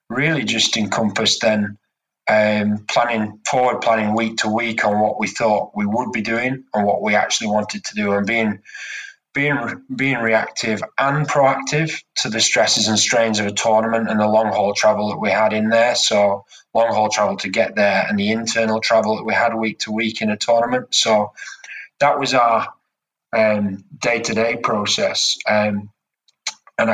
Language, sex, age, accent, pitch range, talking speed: English, male, 20-39, British, 105-120 Hz, 185 wpm